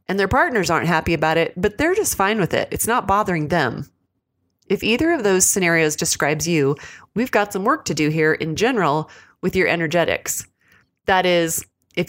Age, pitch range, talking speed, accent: 30-49, 160-200 Hz, 195 wpm, American